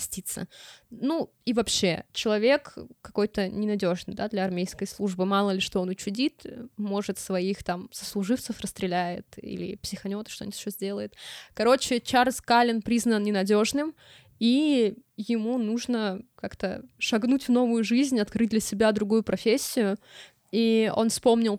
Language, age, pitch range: Russian, 20-39, 200-240 Hz